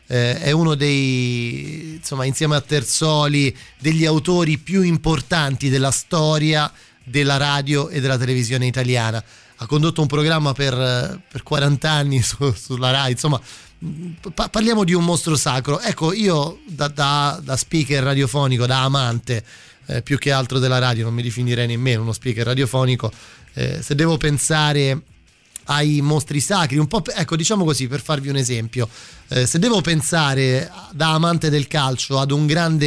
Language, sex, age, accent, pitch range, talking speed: Italian, male, 30-49, native, 125-155 Hz, 160 wpm